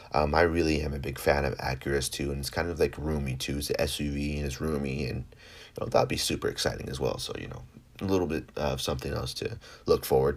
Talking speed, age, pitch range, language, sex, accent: 260 wpm, 30-49, 75-120 Hz, English, male, American